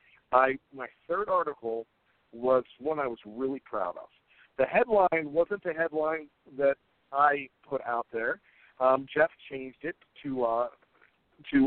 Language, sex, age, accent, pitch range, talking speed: English, male, 50-69, American, 135-165 Hz, 145 wpm